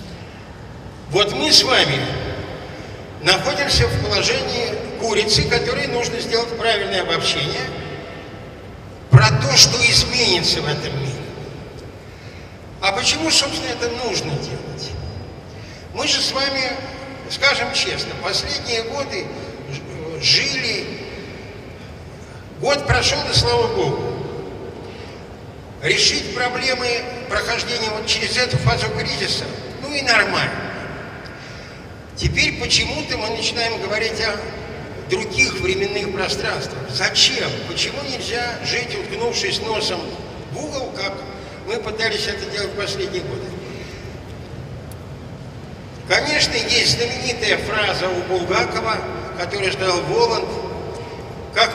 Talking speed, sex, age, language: 100 wpm, male, 60-79, Russian